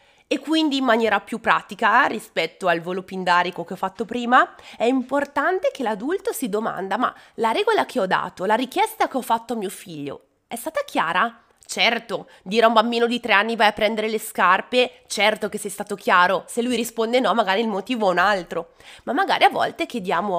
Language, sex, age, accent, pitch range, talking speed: Italian, female, 20-39, native, 205-275 Hz, 205 wpm